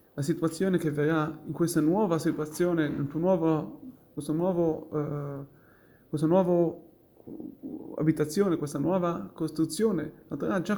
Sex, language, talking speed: male, Italian, 105 wpm